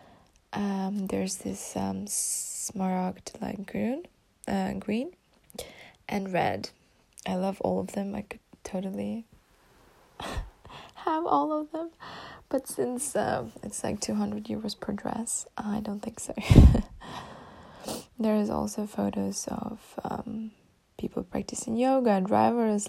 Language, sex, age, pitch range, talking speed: English, female, 20-39, 190-225 Hz, 125 wpm